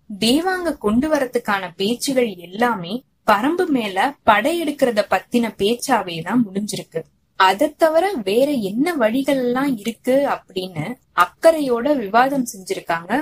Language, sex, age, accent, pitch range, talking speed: Tamil, female, 20-39, native, 205-285 Hz, 100 wpm